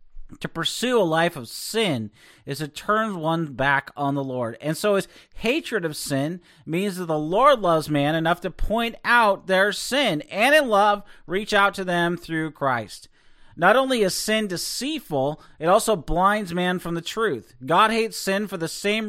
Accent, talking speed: American, 185 wpm